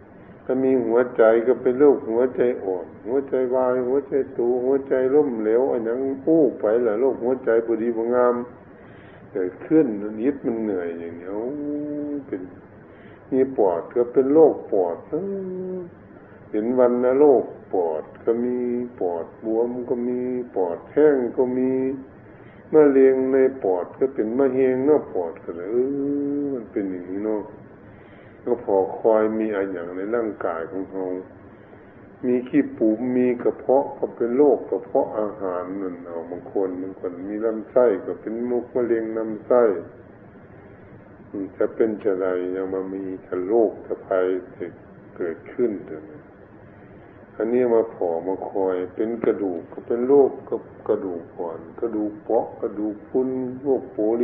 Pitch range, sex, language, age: 100-130 Hz, male, Thai, 60-79